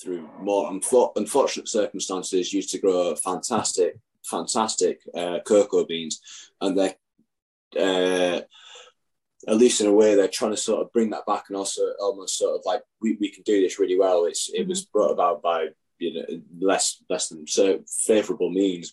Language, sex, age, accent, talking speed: English, male, 20-39, British, 175 wpm